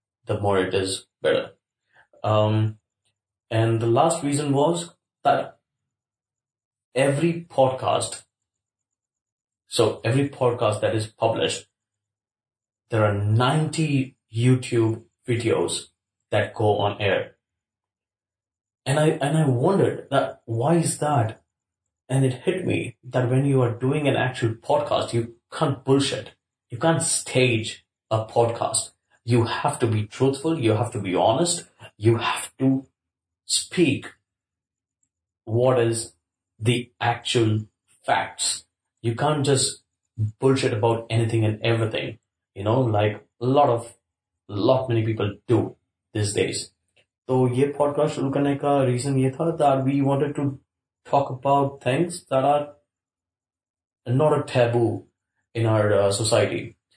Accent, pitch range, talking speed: Indian, 105-135 Hz, 125 wpm